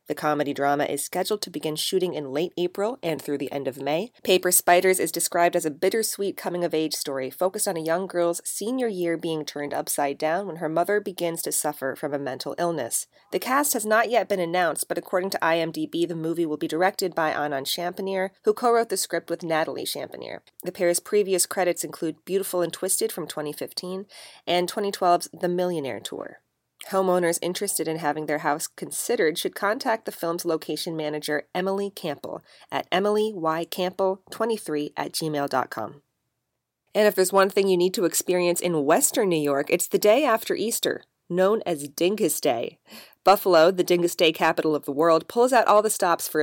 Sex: female